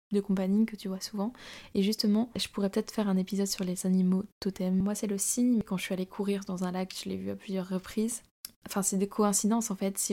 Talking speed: 255 wpm